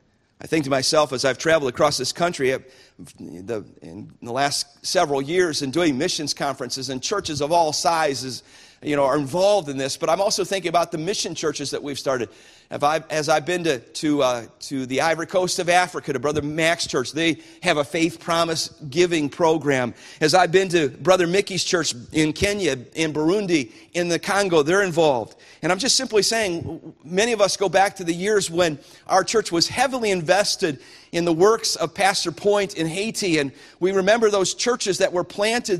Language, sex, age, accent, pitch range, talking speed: English, male, 50-69, American, 150-200 Hz, 195 wpm